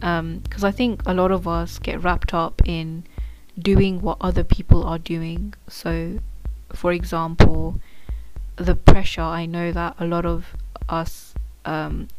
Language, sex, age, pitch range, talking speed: English, female, 20-39, 165-180 Hz, 155 wpm